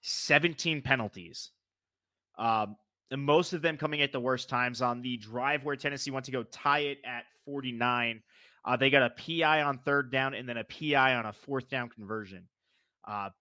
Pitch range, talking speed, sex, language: 115-145 Hz, 190 wpm, male, English